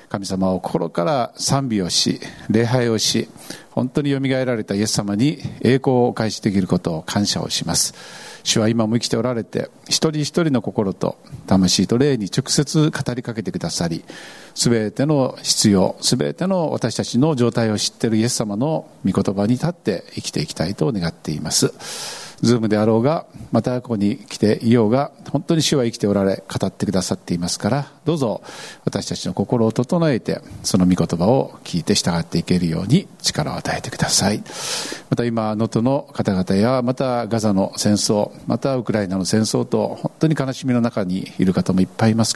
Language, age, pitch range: Japanese, 50-69, 100-135 Hz